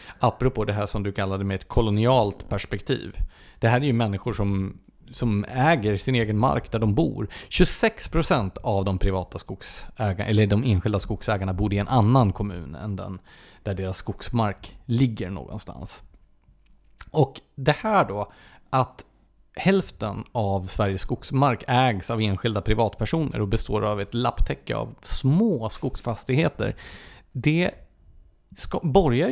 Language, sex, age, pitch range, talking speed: English, male, 30-49, 100-135 Hz, 140 wpm